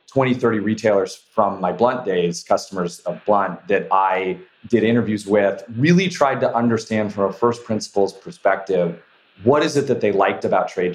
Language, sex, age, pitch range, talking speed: English, male, 30-49, 100-120 Hz, 175 wpm